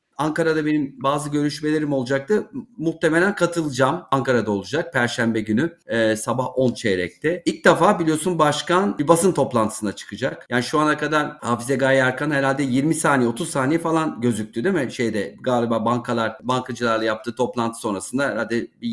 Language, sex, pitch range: Turkish, male, 125-165 Hz